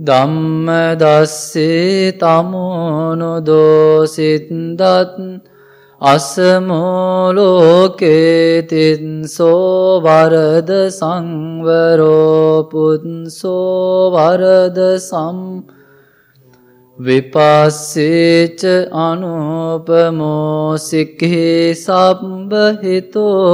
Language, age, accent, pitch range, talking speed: English, 20-39, Indian, 155-185 Hz, 40 wpm